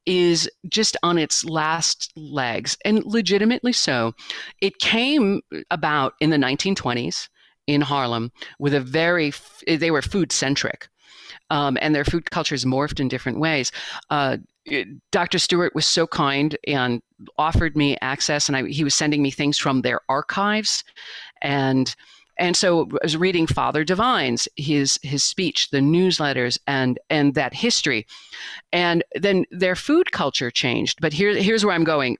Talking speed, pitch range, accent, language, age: 150 wpm, 135-175 Hz, American, English, 50-69